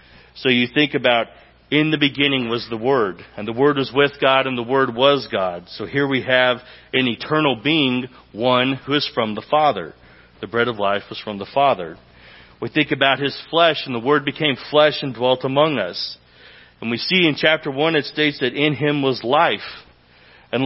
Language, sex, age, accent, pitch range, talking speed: English, male, 40-59, American, 125-150 Hz, 205 wpm